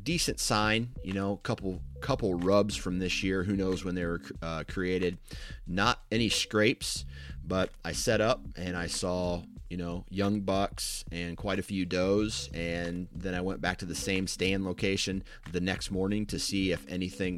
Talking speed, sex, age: 185 wpm, male, 30-49